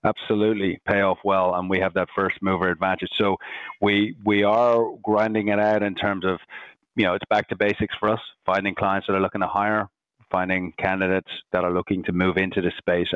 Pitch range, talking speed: 95-115 Hz, 210 wpm